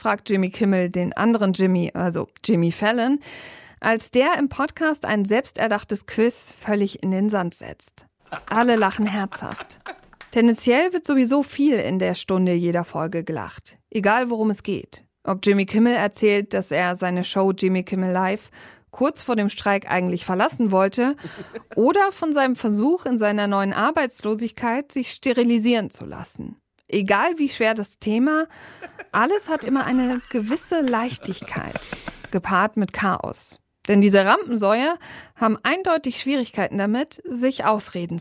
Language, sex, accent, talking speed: German, female, German, 145 wpm